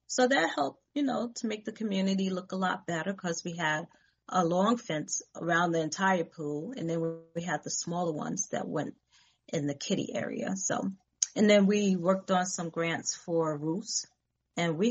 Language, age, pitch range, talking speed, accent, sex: English, 30-49, 165-210 Hz, 195 wpm, American, female